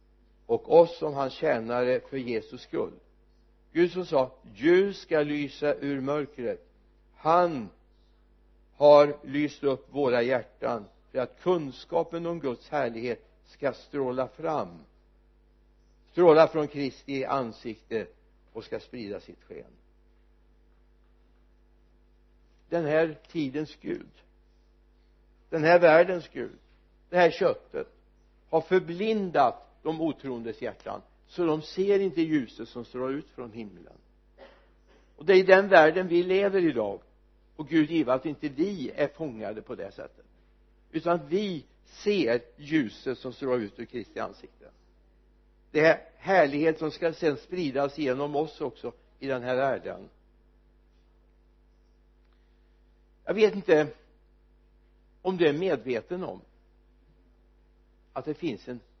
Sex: male